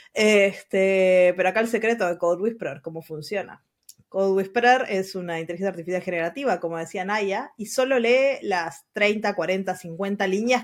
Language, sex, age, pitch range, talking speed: Spanish, female, 20-39, 185-260 Hz, 160 wpm